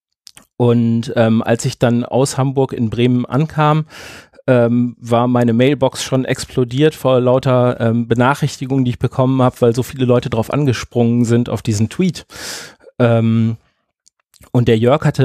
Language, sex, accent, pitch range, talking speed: German, male, German, 110-130 Hz, 155 wpm